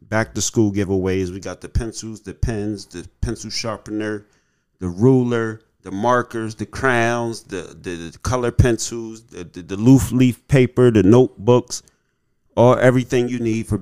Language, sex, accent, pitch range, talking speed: English, male, American, 95-115 Hz, 160 wpm